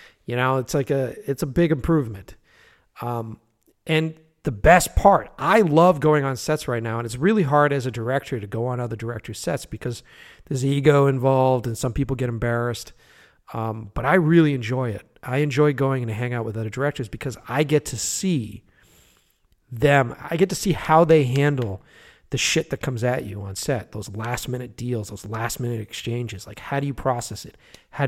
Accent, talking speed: American, 200 wpm